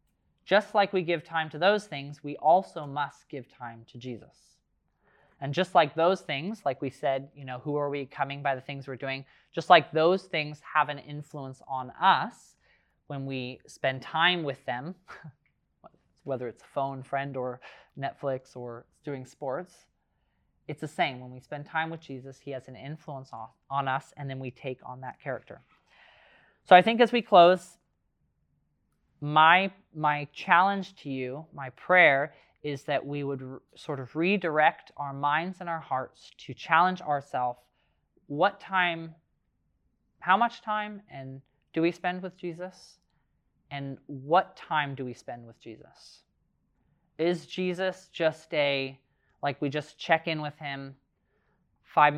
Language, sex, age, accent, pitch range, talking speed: English, male, 20-39, American, 130-165 Hz, 160 wpm